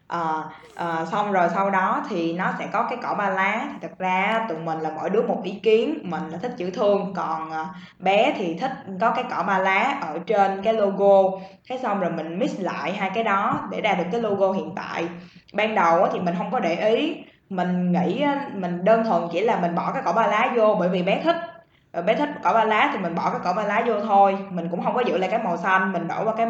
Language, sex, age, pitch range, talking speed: Vietnamese, female, 10-29, 175-225 Hz, 255 wpm